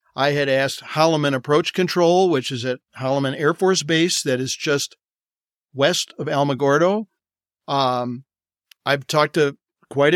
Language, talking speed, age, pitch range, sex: English, 140 wpm, 50-69, 130-165 Hz, male